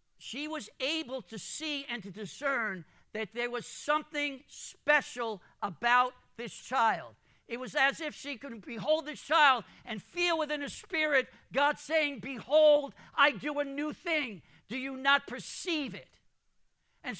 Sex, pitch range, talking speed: male, 215-290 Hz, 155 wpm